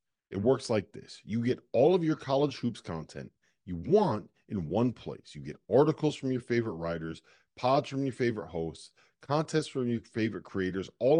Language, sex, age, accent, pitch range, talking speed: English, male, 40-59, American, 95-145 Hz, 190 wpm